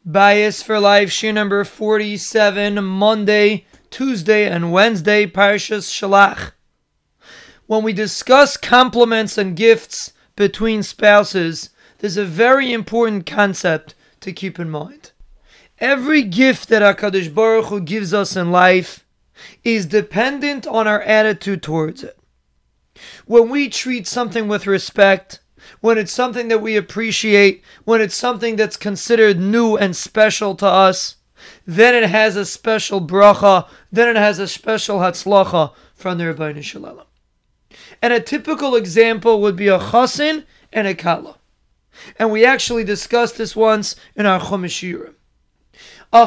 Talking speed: 135 wpm